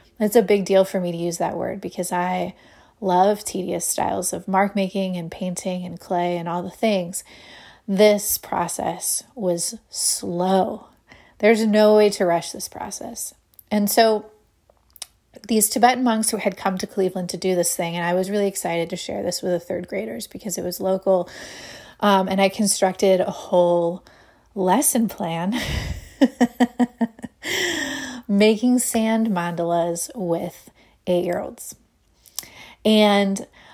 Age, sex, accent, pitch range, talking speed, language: 30-49, female, American, 180-220 Hz, 145 wpm, English